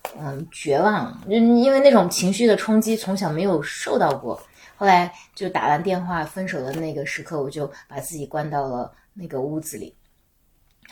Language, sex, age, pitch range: Chinese, female, 20-39, 145-190 Hz